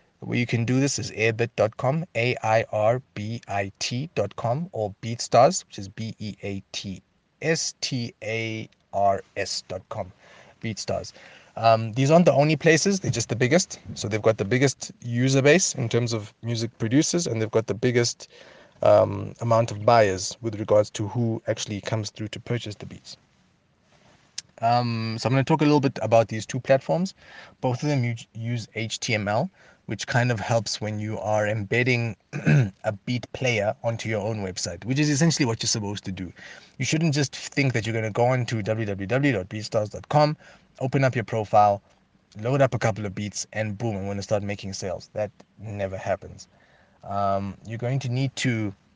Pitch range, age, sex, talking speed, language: 105-130 Hz, 30-49, male, 170 wpm, English